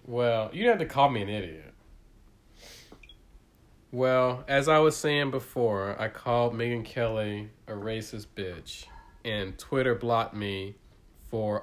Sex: male